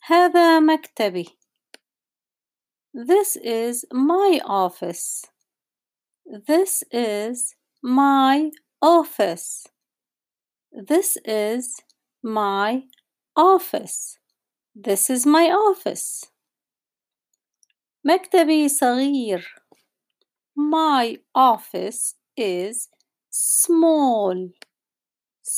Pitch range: 220-320 Hz